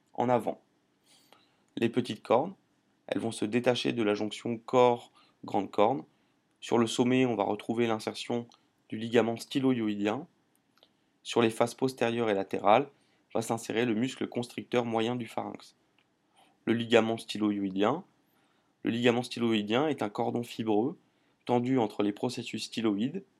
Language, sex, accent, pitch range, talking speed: French, male, French, 110-125 Hz, 125 wpm